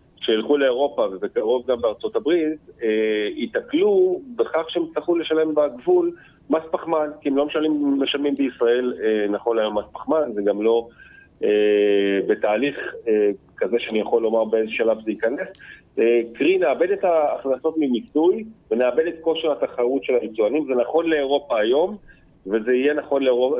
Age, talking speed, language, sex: 40-59, 150 wpm, Hebrew, male